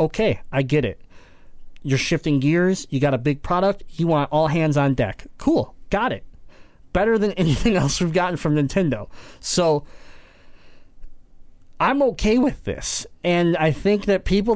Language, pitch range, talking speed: English, 130-185 Hz, 160 wpm